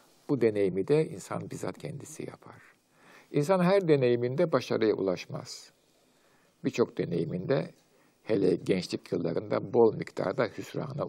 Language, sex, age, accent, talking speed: Turkish, male, 60-79, native, 110 wpm